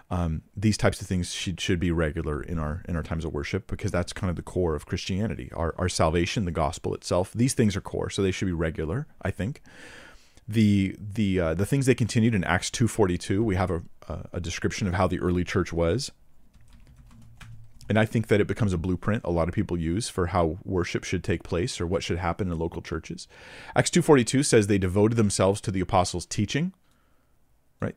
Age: 40-59